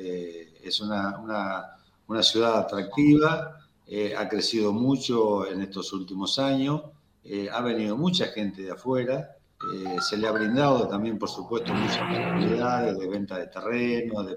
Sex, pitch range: male, 100-130 Hz